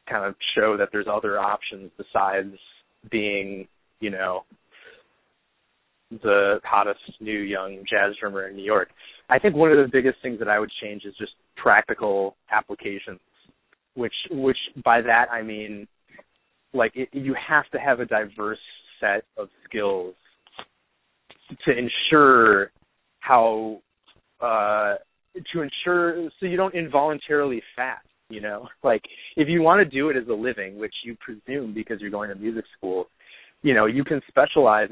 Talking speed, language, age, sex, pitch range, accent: 155 wpm, English, 30-49, male, 110-150 Hz, American